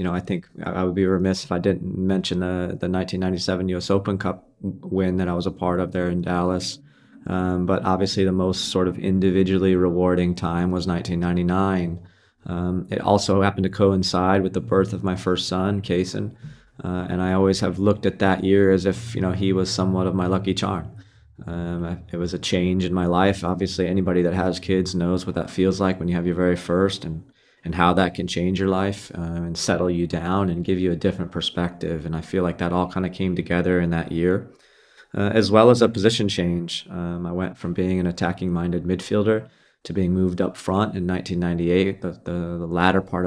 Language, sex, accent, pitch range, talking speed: English, male, American, 90-95 Hz, 220 wpm